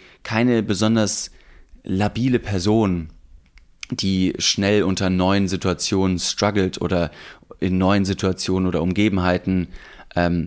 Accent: German